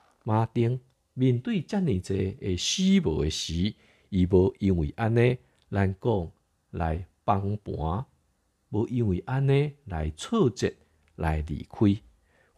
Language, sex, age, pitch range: Chinese, male, 50-69, 80-115 Hz